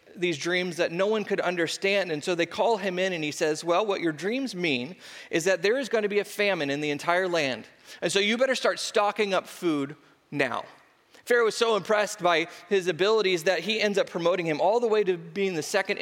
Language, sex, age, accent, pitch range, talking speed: English, male, 30-49, American, 170-220 Hz, 235 wpm